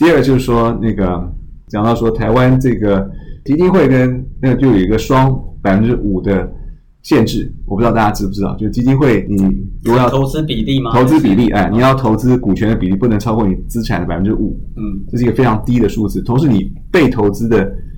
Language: Chinese